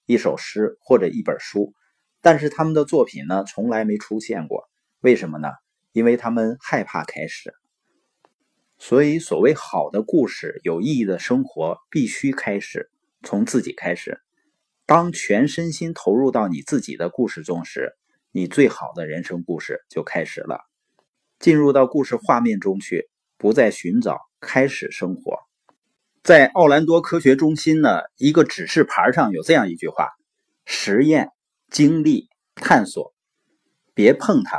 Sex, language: male, Chinese